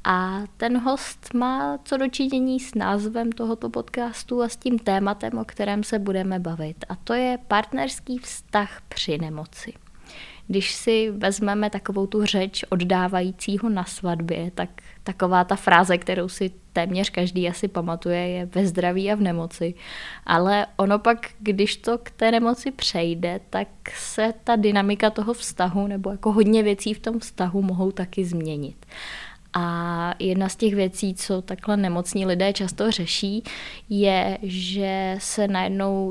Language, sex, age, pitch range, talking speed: Czech, female, 20-39, 180-215 Hz, 150 wpm